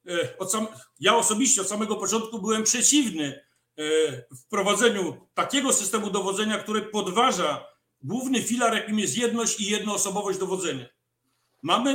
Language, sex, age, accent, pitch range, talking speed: Polish, male, 50-69, native, 190-240 Hz, 110 wpm